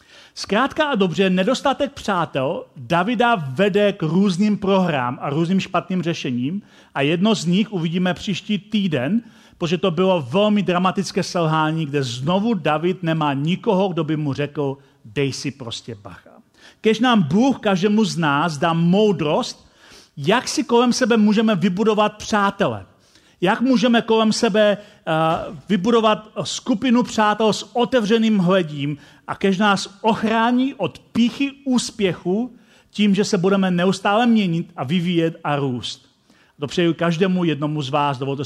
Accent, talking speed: native, 135 wpm